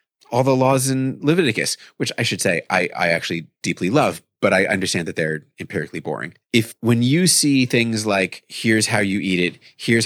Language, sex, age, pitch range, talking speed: English, male, 30-49, 100-130 Hz, 195 wpm